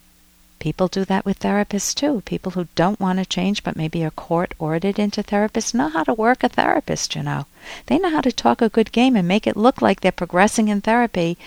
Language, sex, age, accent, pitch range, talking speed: English, female, 60-79, American, 165-225 Hz, 225 wpm